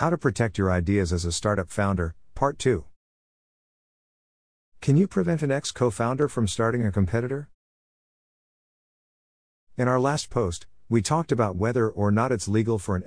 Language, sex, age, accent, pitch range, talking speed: English, male, 50-69, American, 90-125 Hz, 155 wpm